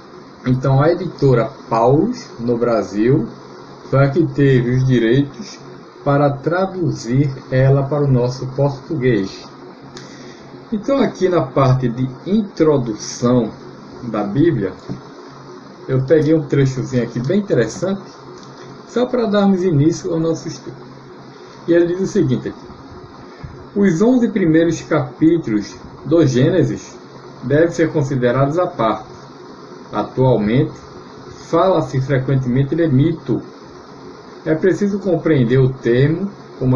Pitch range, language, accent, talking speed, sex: 130-180 Hz, Portuguese, Brazilian, 115 wpm, male